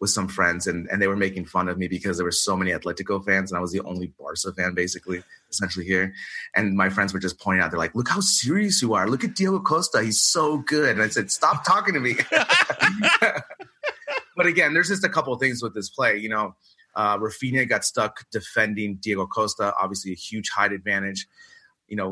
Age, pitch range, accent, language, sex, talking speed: 30-49, 95-120 Hz, American, English, male, 225 wpm